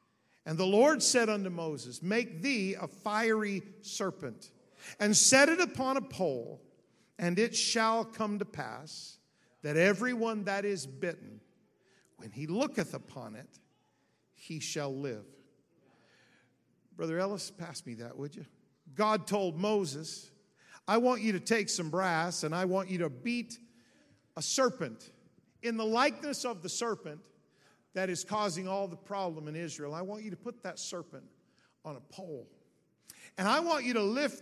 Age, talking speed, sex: 50-69, 160 wpm, male